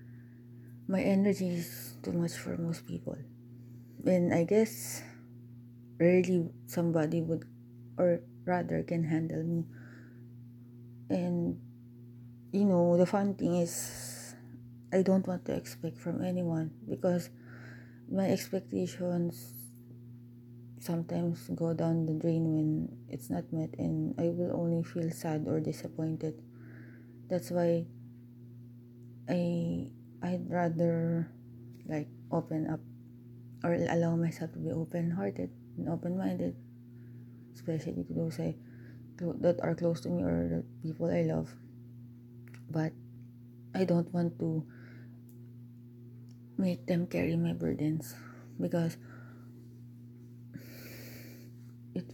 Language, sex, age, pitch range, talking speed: English, female, 20-39, 120-165 Hz, 110 wpm